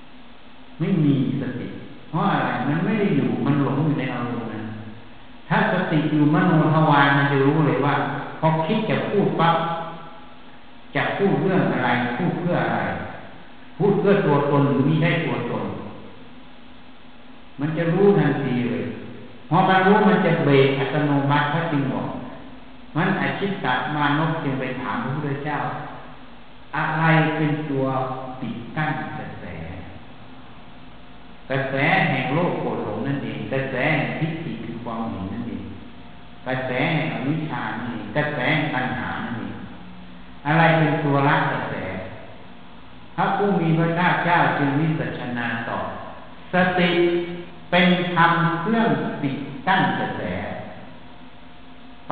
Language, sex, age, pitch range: Thai, male, 60-79, 125-165 Hz